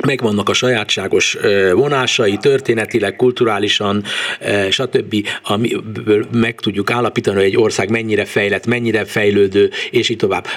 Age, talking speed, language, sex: 60-79, 120 wpm, Hungarian, male